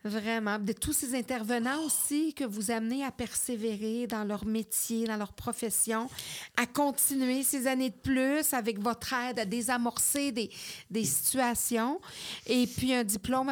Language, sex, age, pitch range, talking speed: French, female, 50-69, 220-265 Hz, 155 wpm